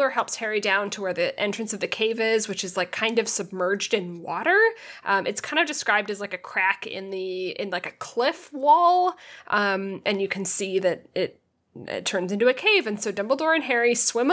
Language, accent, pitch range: English, American, 200-260 Hz